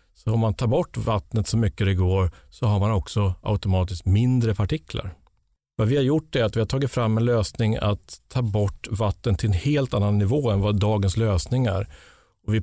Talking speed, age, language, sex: 205 wpm, 50-69, English, male